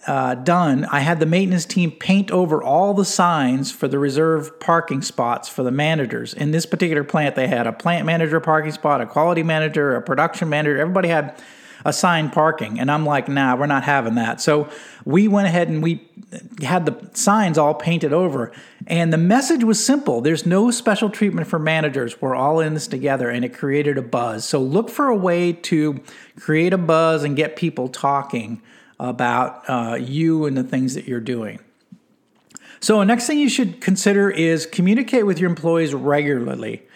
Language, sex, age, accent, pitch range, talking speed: English, male, 50-69, American, 145-185 Hz, 190 wpm